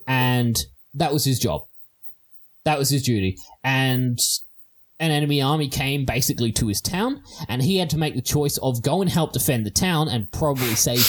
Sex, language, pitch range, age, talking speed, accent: male, English, 110-145 Hz, 20-39, 190 wpm, Australian